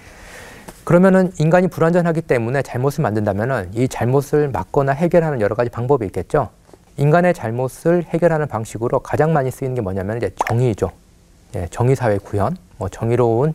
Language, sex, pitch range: Korean, male, 110-150 Hz